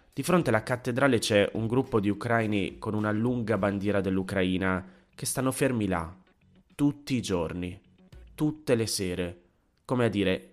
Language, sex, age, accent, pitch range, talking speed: Italian, male, 30-49, native, 95-120 Hz, 155 wpm